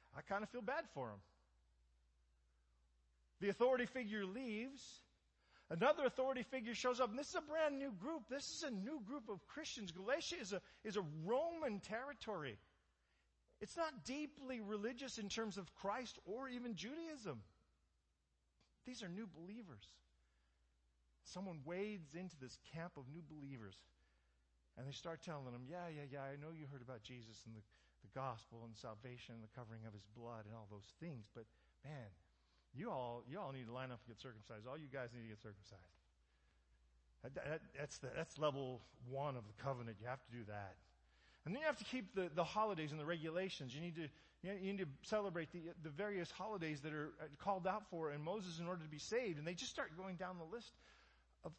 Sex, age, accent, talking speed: male, 40-59, American, 200 wpm